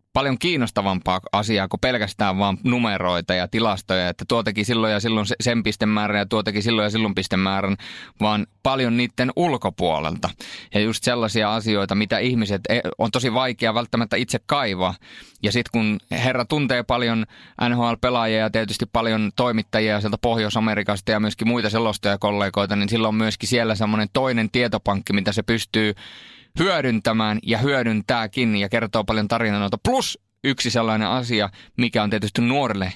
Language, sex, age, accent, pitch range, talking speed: Finnish, male, 20-39, native, 100-115 Hz, 150 wpm